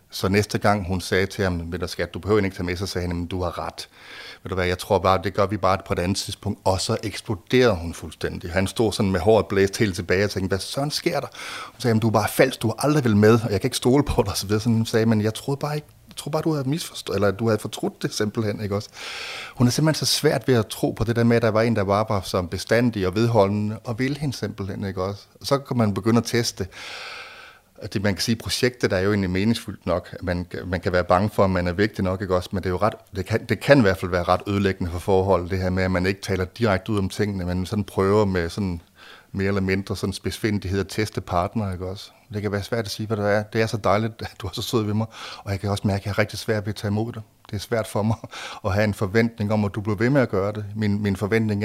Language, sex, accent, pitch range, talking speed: Danish, male, native, 95-110 Hz, 290 wpm